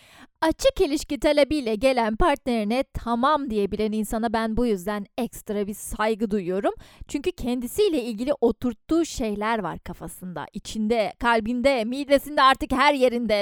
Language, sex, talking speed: Turkish, female, 125 wpm